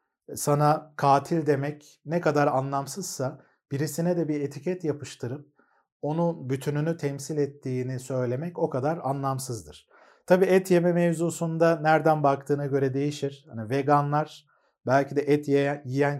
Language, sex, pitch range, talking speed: Turkish, male, 130-155 Hz, 120 wpm